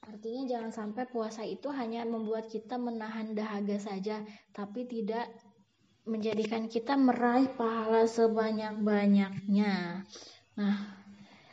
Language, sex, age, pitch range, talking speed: Indonesian, female, 20-39, 210-245 Hz, 105 wpm